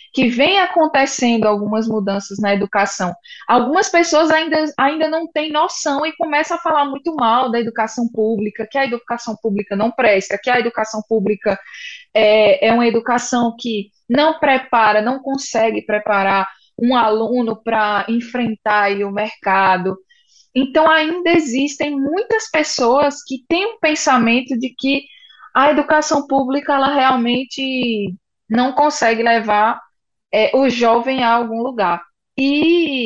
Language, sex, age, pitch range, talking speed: Portuguese, female, 20-39, 210-280 Hz, 135 wpm